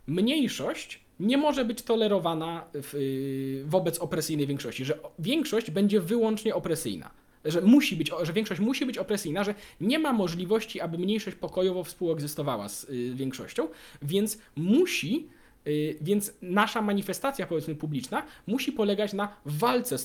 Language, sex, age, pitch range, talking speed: Polish, male, 20-39, 155-220 Hz, 130 wpm